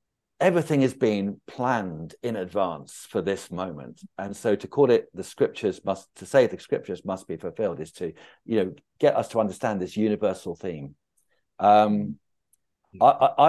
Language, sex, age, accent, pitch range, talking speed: English, male, 50-69, British, 105-130 Hz, 165 wpm